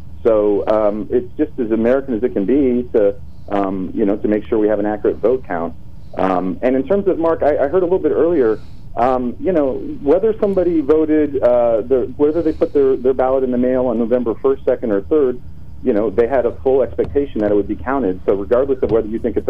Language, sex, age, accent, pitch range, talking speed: English, male, 40-59, American, 100-140 Hz, 235 wpm